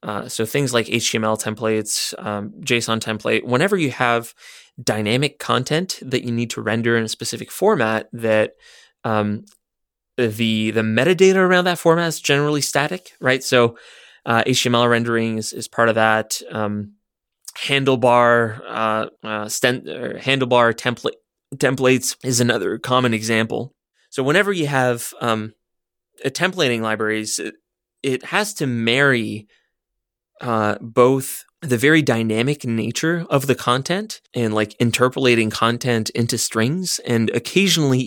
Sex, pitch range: male, 110-135 Hz